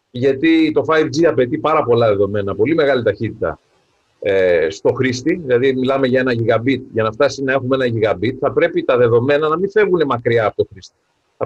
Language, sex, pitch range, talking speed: English, male, 130-200 Hz, 195 wpm